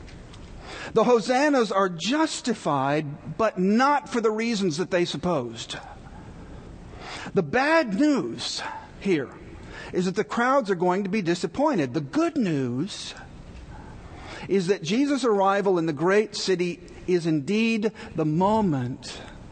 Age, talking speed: 50-69, 125 wpm